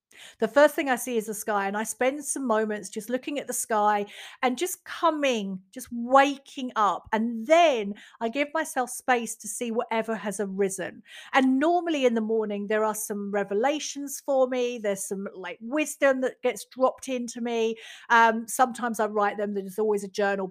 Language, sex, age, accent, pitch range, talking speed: English, female, 40-59, British, 205-260 Hz, 185 wpm